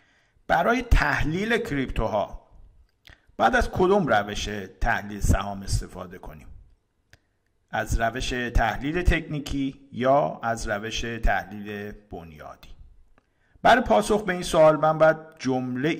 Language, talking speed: Persian, 110 wpm